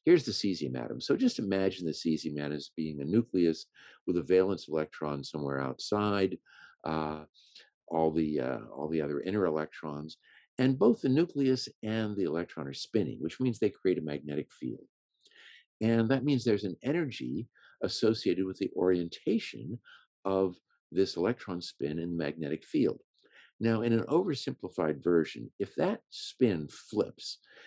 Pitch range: 80-125 Hz